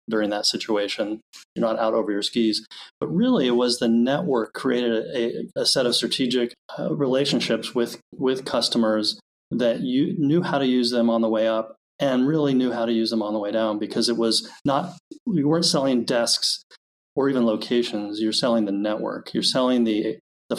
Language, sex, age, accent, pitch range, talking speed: English, male, 30-49, American, 110-140 Hz, 190 wpm